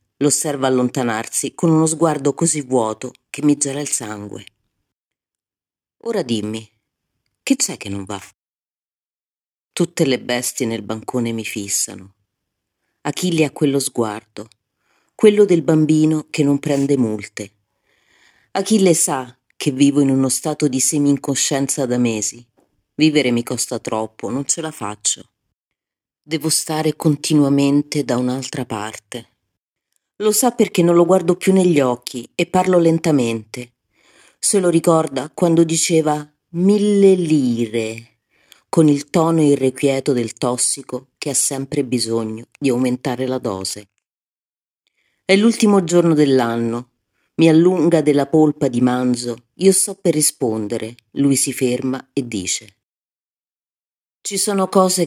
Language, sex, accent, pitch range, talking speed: Italian, female, native, 115-160 Hz, 125 wpm